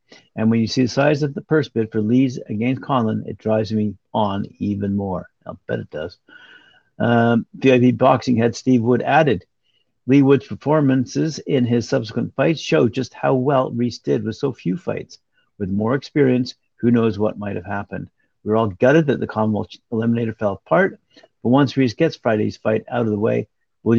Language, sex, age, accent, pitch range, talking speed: English, male, 50-69, American, 105-130 Hz, 195 wpm